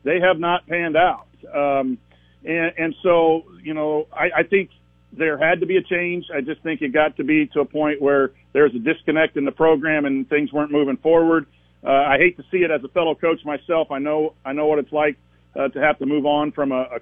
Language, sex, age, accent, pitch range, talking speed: English, male, 50-69, American, 135-165 Hz, 245 wpm